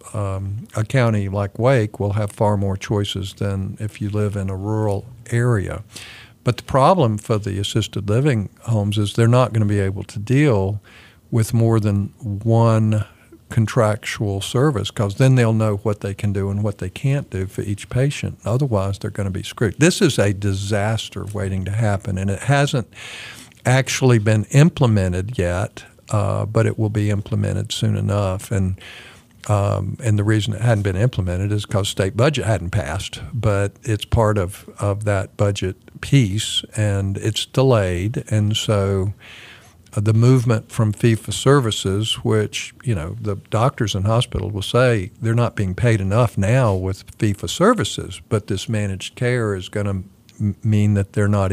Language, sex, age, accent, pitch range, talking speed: English, male, 50-69, American, 100-115 Hz, 170 wpm